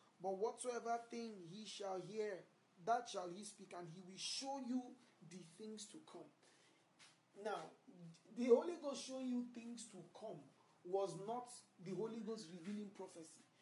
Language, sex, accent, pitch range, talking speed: English, male, Nigerian, 190-245 Hz, 155 wpm